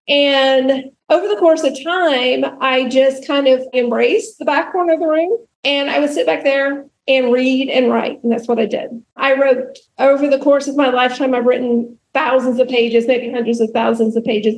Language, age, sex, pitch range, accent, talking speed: English, 40-59, female, 235-280 Hz, American, 210 wpm